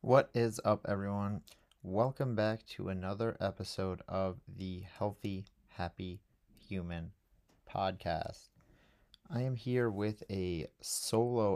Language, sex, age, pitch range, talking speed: English, male, 30-49, 95-115 Hz, 110 wpm